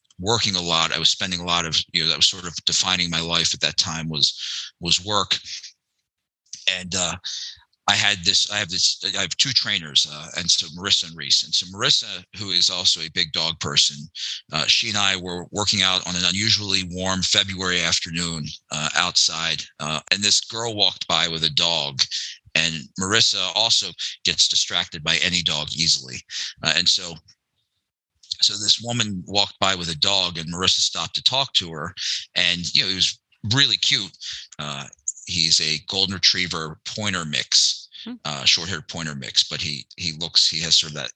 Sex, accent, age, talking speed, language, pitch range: male, American, 50-69, 190 wpm, English, 85-105 Hz